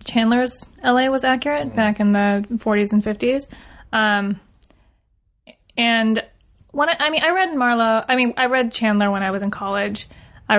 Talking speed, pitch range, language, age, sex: 170 wpm, 200-230 Hz, English, 20-39, female